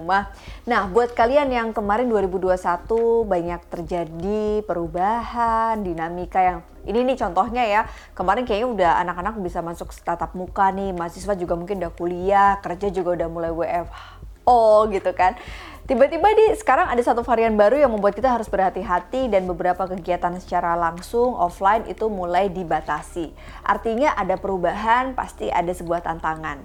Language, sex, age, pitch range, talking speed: Indonesian, female, 20-39, 175-230 Hz, 145 wpm